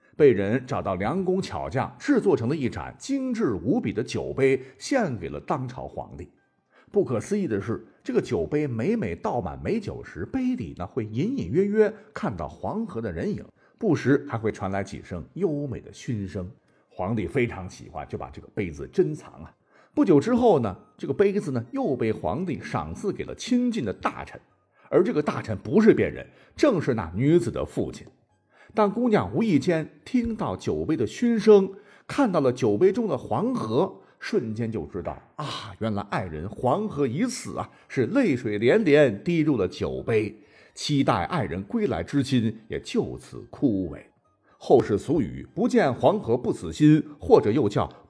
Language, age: Chinese, 50-69